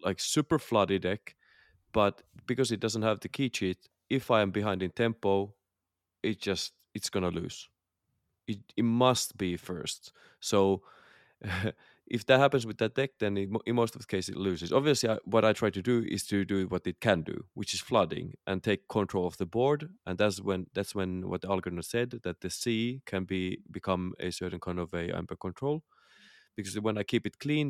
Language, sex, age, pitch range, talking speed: English, male, 30-49, 90-115 Hz, 210 wpm